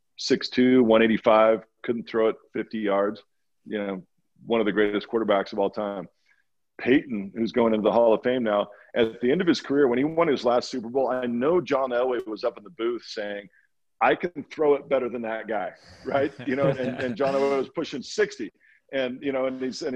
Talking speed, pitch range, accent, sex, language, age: 215 wpm, 100-130 Hz, American, male, English, 50-69